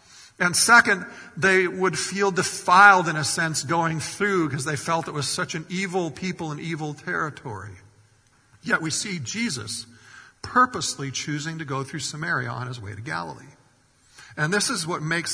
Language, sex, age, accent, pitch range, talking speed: English, male, 50-69, American, 140-180 Hz, 170 wpm